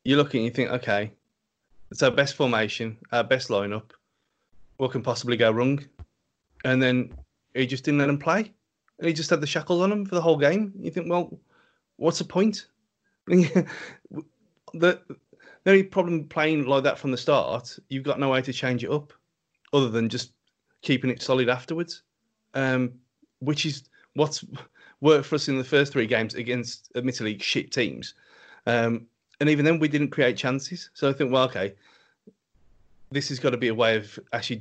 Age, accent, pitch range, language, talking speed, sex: 30-49, British, 125-155 Hz, English, 180 wpm, male